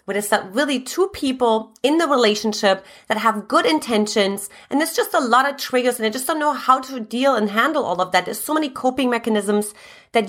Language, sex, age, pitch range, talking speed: English, female, 30-49, 205-280 Hz, 225 wpm